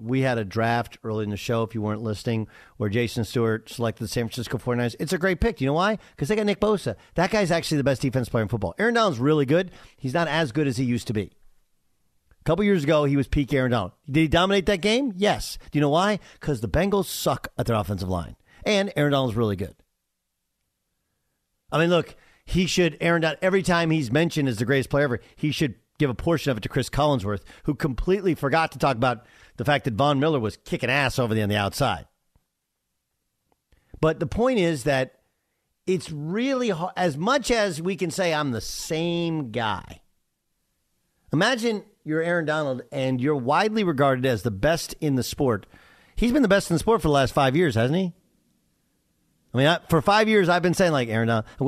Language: English